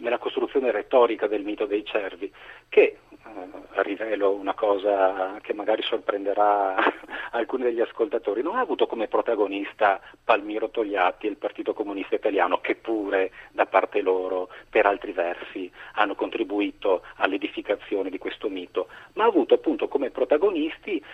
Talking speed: 140 wpm